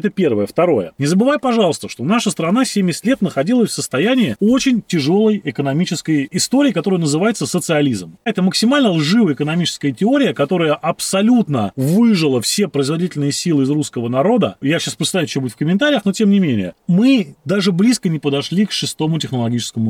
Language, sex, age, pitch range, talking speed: Russian, male, 30-49, 140-205 Hz, 165 wpm